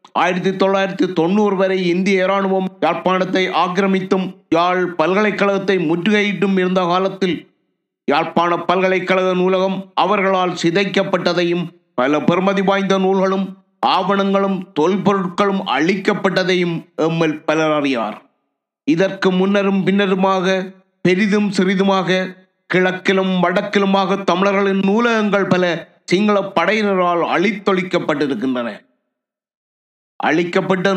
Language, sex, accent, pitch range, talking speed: Tamil, male, native, 175-200 Hz, 80 wpm